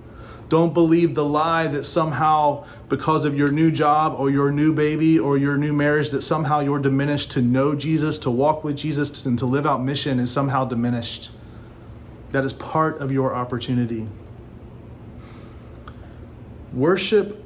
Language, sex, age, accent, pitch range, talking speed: English, male, 30-49, American, 115-150 Hz, 155 wpm